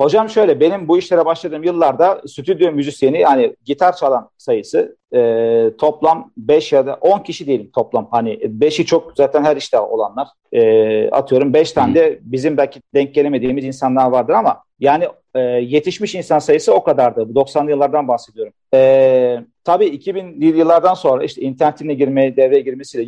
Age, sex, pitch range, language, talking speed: 40-59, male, 135-200 Hz, Turkish, 160 wpm